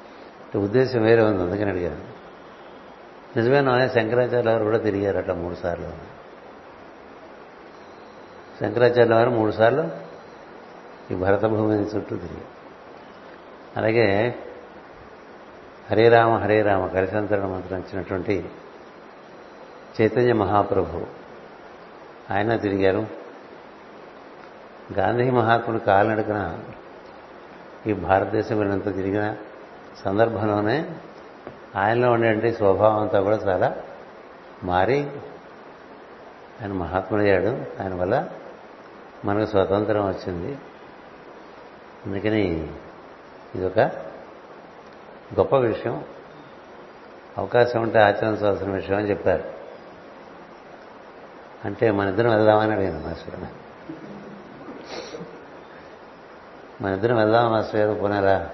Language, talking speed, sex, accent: Telugu, 75 wpm, male, native